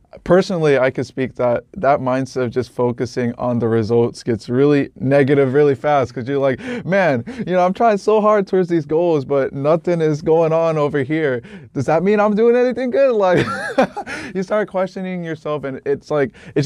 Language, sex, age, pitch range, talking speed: English, male, 20-39, 120-155 Hz, 195 wpm